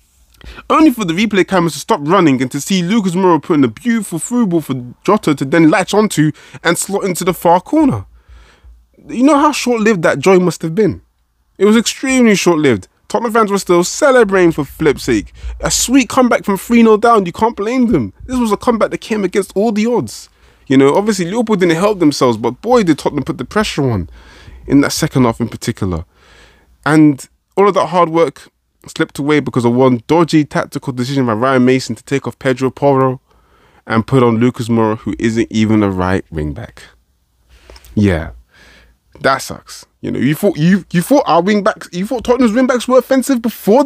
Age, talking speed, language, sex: 20-39, 195 wpm, English, male